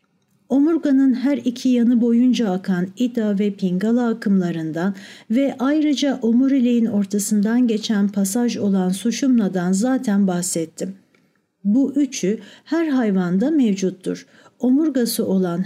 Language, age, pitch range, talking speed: Turkish, 60-79, 195-255 Hz, 105 wpm